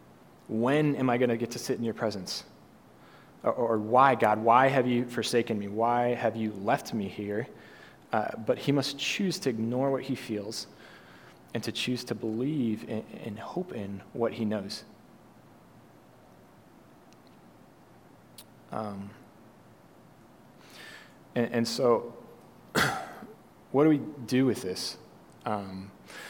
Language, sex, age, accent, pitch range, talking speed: English, male, 20-39, American, 110-125 Hz, 130 wpm